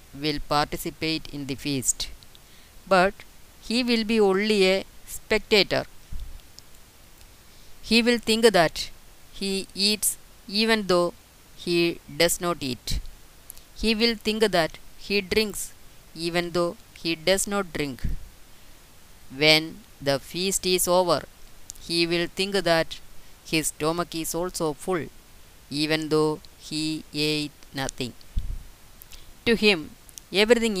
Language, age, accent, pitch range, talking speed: Malayalam, 20-39, native, 140-185 Hz, 115 wpm